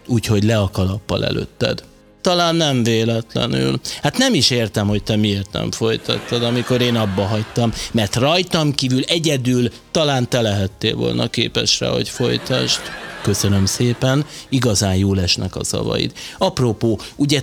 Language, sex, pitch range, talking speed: Hungarian, male, 105-130 Hz, 140 wpm